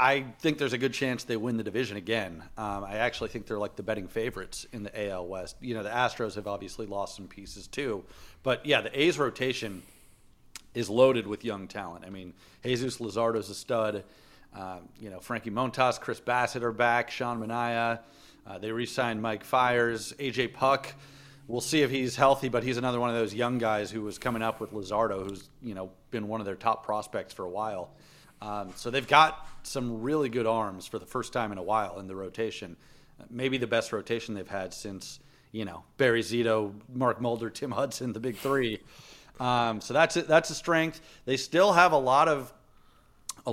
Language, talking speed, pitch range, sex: English, 205 wpm, 110-130 Hz, male